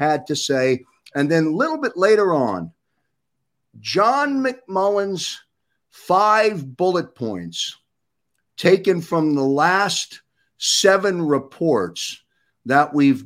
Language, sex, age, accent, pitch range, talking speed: English, male, 50-69, American, 125-180 Hz, 105 wpm